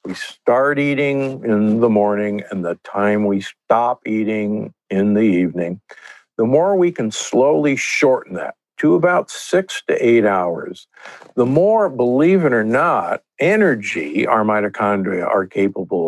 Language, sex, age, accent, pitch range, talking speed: English, male, 60-79, American, 100-160 Hz, 145 wpm